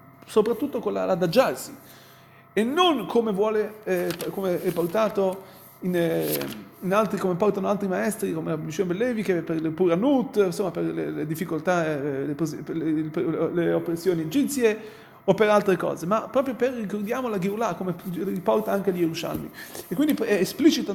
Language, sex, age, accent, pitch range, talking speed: Italian, male, 30-49, native, 175-230 Hz, 170 wpm